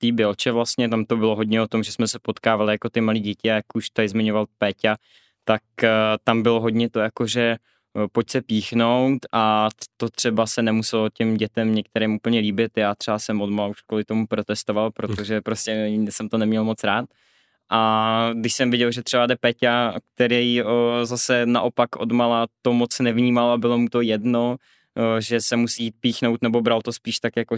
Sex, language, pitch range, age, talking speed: male, Czech, 110-120 Hz, 20-39, 195 wpm